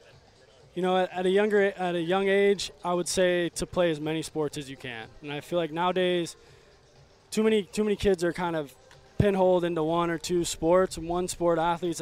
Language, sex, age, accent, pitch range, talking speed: English, male, 20-39, American, 140-175 Hz, 215 wpm